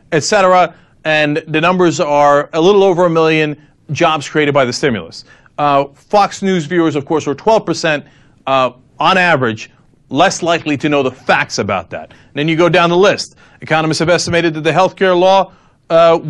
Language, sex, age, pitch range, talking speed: English, male, 40-59, 145-195 Hz, 180 wpm